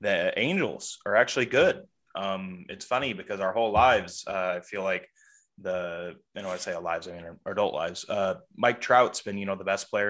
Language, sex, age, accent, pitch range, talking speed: English, male, 20-39, American, 95-115 Hz, 225 wpm